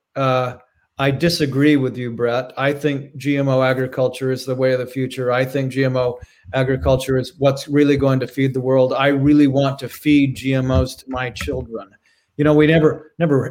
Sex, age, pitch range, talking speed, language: male, 40-59, 130-145 Hz, 185 wpm, English